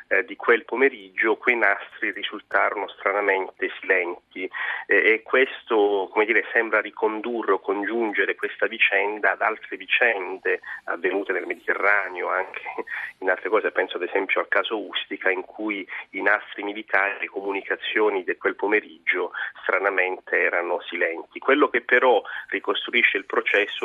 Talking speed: 135 wpm